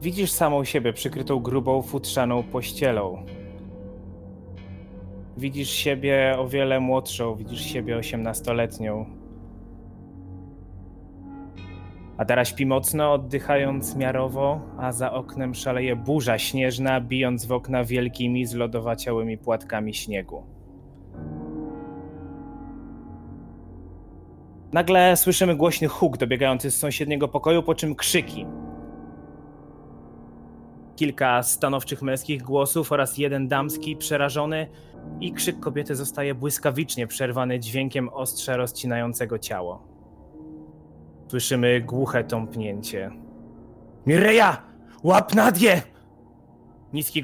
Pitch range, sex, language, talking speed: 105-140 Hz, male, Polish, 90 wpm